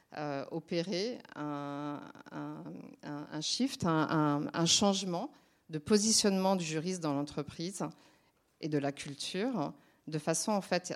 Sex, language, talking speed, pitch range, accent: female, French, 130 wpm, 155-200 Hz, French